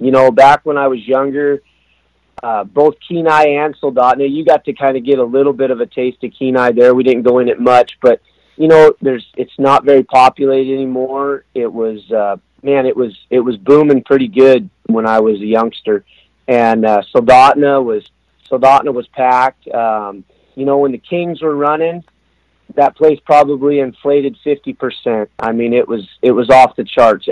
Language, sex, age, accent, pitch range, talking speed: English, male, 30-49, American, 115-140 Hz, 195 wpm